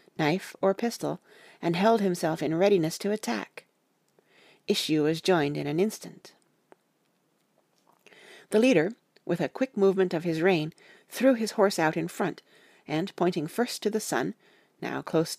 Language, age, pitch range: English, 40-59, 170-220 Hz